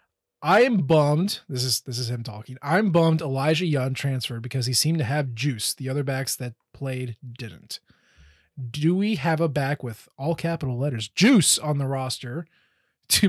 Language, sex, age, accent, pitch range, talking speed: English, male, 20-39, American, 135-175 Hz, 180 wpm